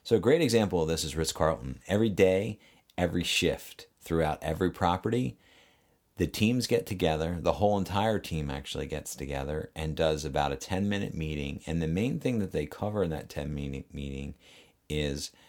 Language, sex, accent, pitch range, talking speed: English, male, American, 75-95 Hz, 175 wpm